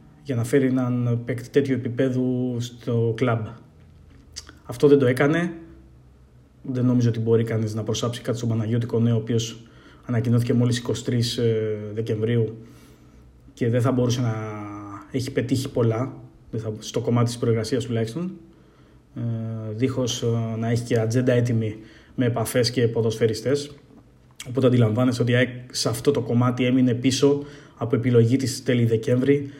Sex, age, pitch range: male, 20-39, 115-135 Hz